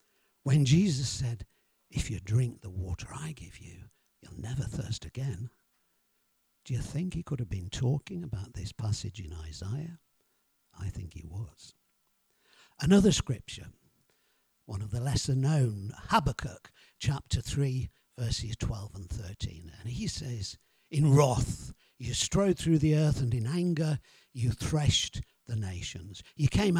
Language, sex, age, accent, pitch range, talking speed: English, male, 60-79, British, 110-150 Hz, 145 wpm